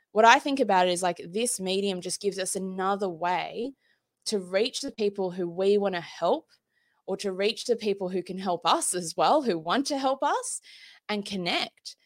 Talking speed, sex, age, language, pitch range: 205 wpm, female, 20-39, English, 180-235 Hz